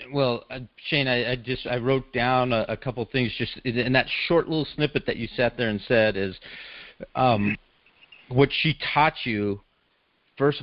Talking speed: 185 wpm